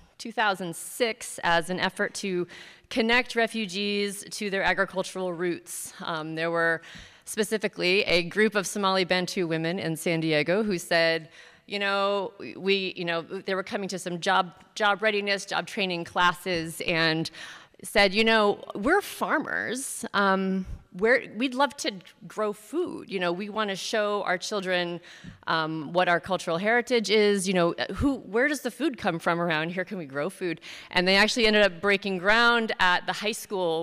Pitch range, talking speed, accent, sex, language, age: 170-205 Hz, 170 wpm, American, female, English, 30-49